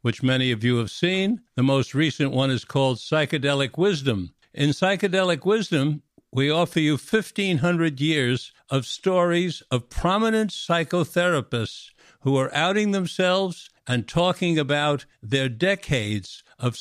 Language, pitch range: English, 130-170 Hz